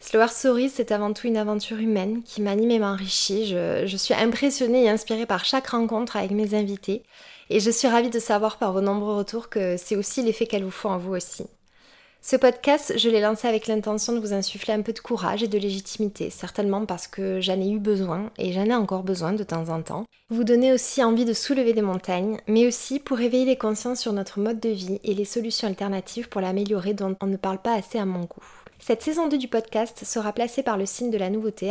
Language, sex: French, female